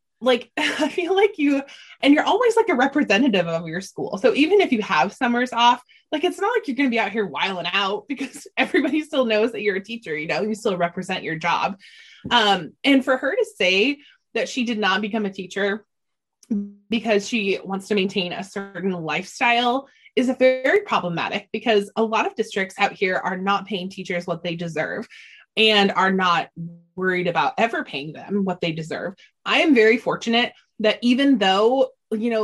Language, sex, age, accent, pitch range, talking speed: English, female, 20-39, American, 190-255 Hz, 200 wpm